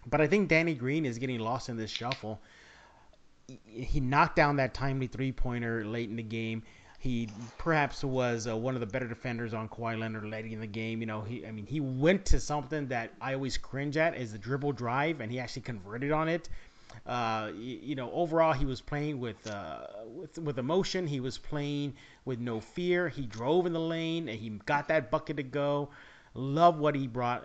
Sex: male